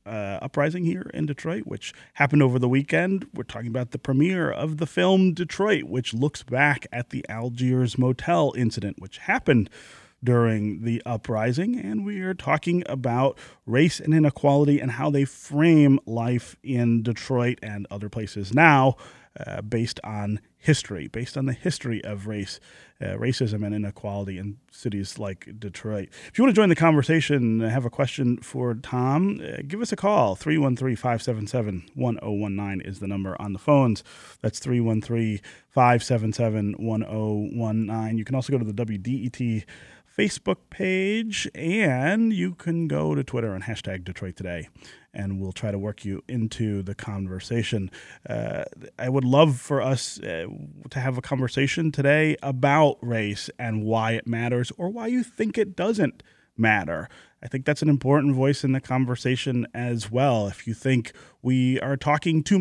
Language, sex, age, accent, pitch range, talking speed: English, male, 30-49, American, 110-145 Hz, 160 wpm